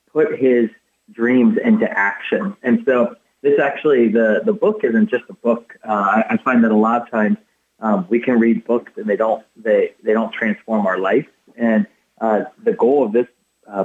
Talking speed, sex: 195 wpm, male